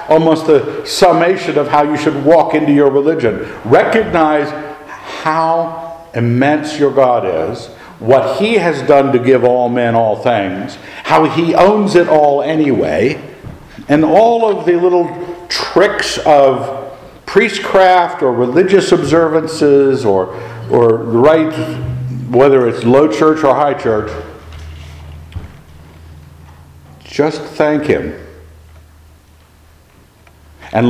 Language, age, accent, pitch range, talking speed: English, 60-79, American, 100-150 Hz, 115 wpm